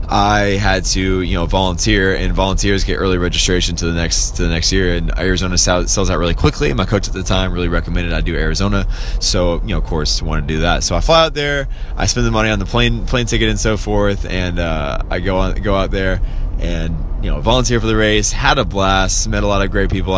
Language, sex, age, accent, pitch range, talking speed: English, male, 20-39, American, 90-110 Hz, 250 wpm